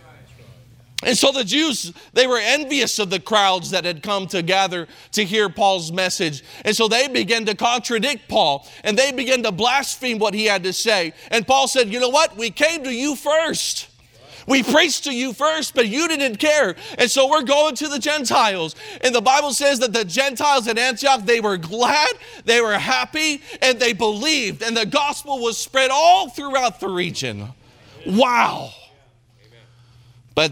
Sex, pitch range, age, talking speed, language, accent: male, 170-250 Hz, 40-59, 185 wpm, English, American